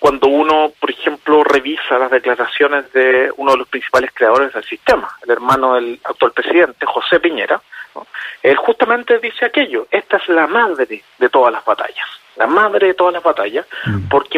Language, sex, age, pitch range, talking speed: Spanish, male, 30-49, 150-195 Hz, 175 wpm